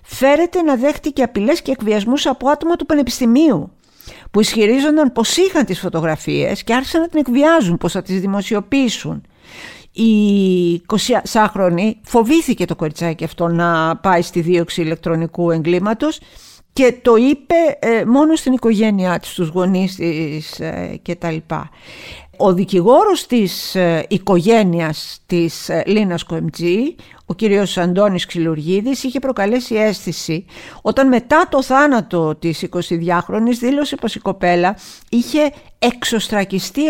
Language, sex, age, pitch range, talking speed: Greek, female, 50-69, 170-245 Hz, 120 wpm